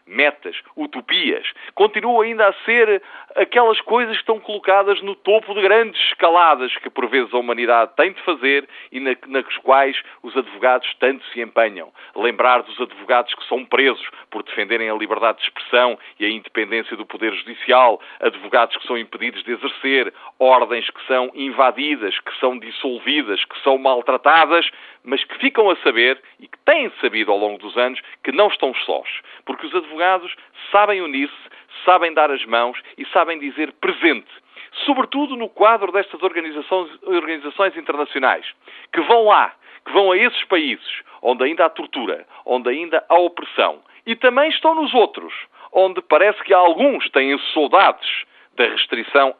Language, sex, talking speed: Portuguese, male, 160 wpm